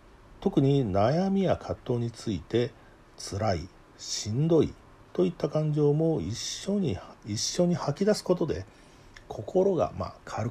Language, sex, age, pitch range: Japanese, male, 50-69, 105-165 Hz